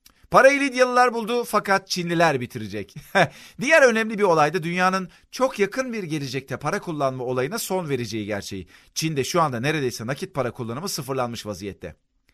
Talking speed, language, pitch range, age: 150 wpm, Turkish, 120-180 Hz, 40-59